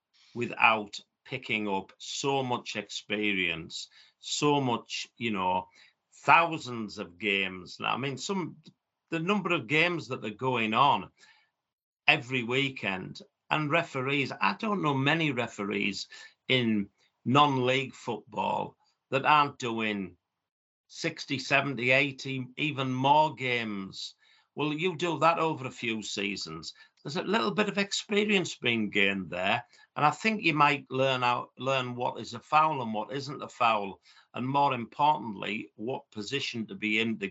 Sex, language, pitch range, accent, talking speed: male, English, 110-150 Hz, British, 145 wpm